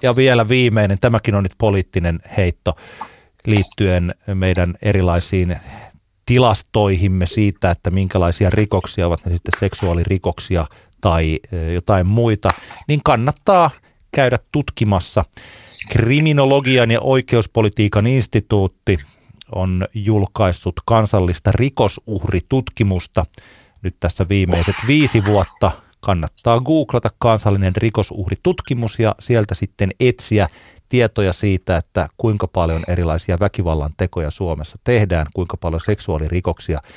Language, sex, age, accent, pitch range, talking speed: Finnish, male, 30-49, native, 90-110 Hz, 100 wpm